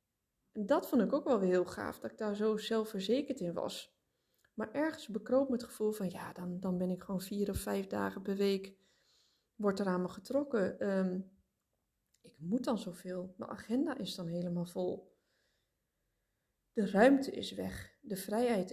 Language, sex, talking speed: Dutch, female, 185 wpm